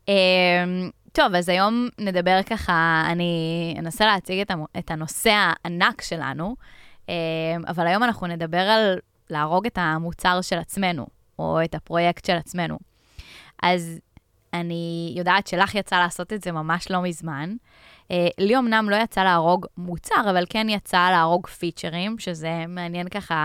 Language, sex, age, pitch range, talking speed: English, female, 10-29, 165-190 Hz, 145 wpm